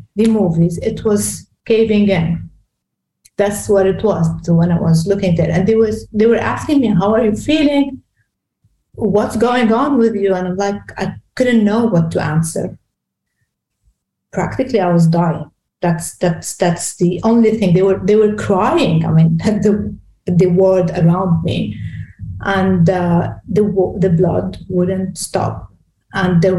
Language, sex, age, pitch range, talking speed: English, female, 30-49, 170-210 Hz, 155 wpm